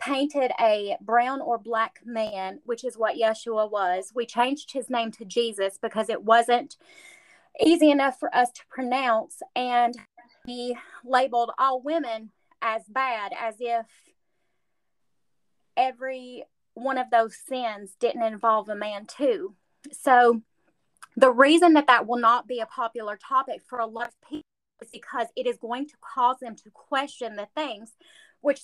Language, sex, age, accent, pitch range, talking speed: English, female, 30-49, American, 220-275 Hz, 155 wpm